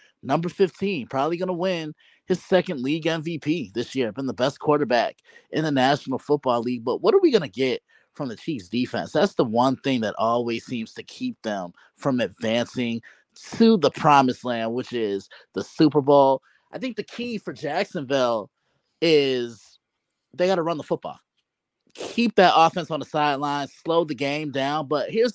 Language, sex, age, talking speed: English, male, 20-39, 185 wpm